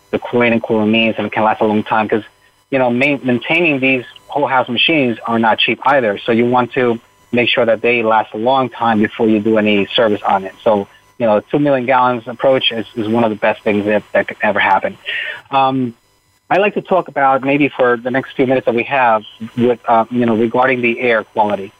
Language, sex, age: English, male, 30-49